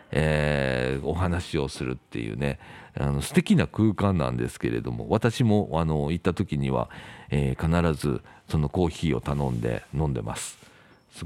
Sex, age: male, 50-69